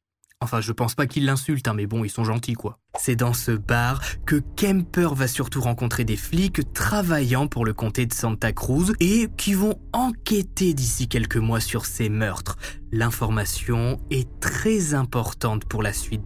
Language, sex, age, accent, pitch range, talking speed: French, male, 20-39, French, 110-150 Hz, 175 wpm